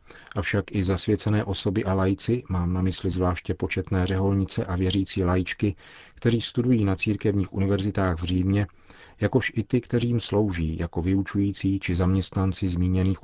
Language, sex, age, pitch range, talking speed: Czech, male, 40-59, 90-100 Hz, 150 wpm